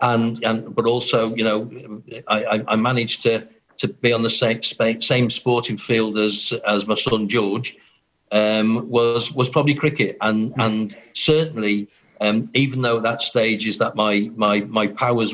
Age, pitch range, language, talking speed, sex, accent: 50-69, 105-125 Hz, English, 170 wpm, male, British